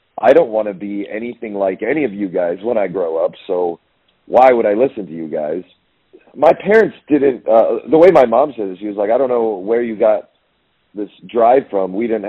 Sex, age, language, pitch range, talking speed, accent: male, 40-59, English, 95-115 Hz, 230 wpm, American